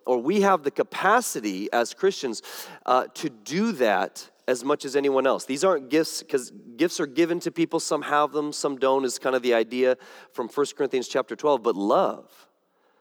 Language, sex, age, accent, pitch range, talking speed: English, male, 30-49, American, 130-205 Hz, 195 wpm